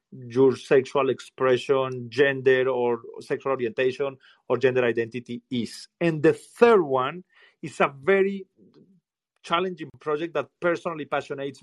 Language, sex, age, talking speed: English, male, 40-59, 120 wpm